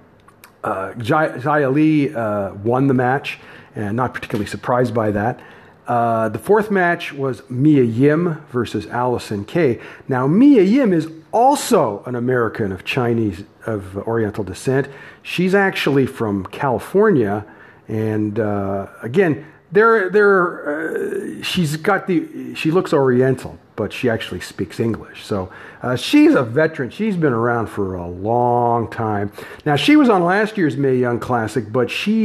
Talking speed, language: 150 wpm, English